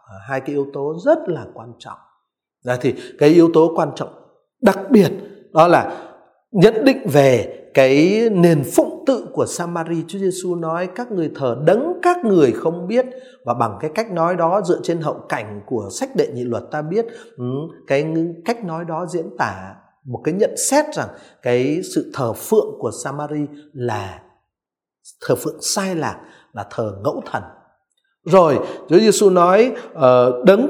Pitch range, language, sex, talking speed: 150-240 Hz, Vietnamese, male, 170 wpm